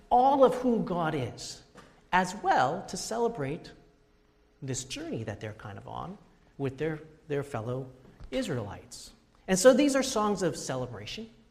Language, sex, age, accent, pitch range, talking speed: English, male, 40-59, American, 140-225 Hz, 145 wpm